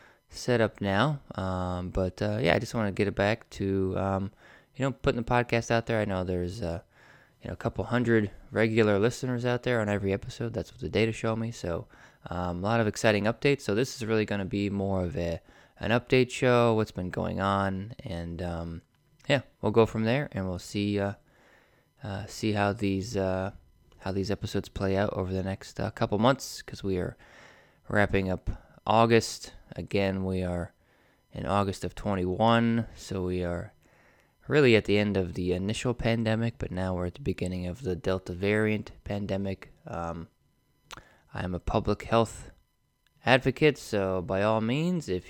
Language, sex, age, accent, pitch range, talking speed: English, male, 20-39, American, 95-115 Hz, 190 wpm